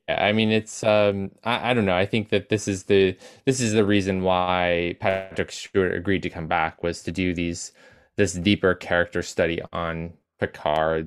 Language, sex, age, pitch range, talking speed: English, male, 20-39, 85-100 Hz, 190 wpm